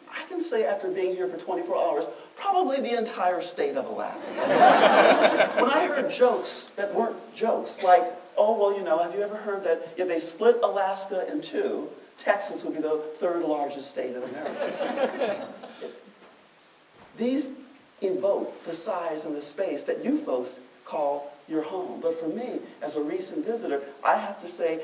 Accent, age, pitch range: American, 50-69, 155-210 Hz